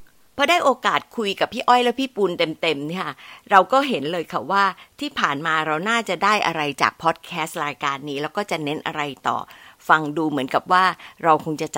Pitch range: 160-225 Hz